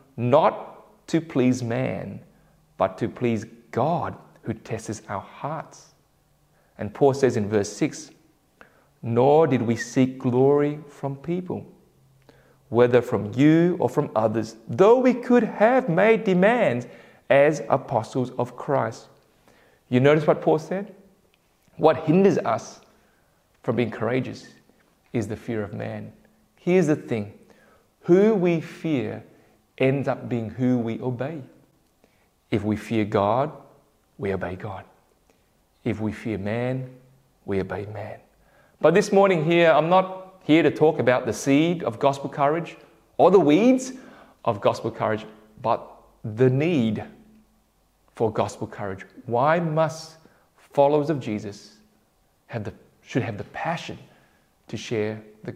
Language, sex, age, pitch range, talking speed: English, male, 30-49, 110-165 Hz, 135 wpm